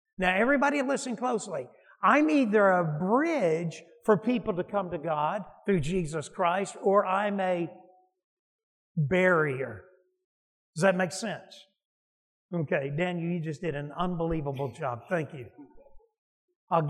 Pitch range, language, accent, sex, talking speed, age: 160-225 Hz, English, American, male, 130 wpm, 60-79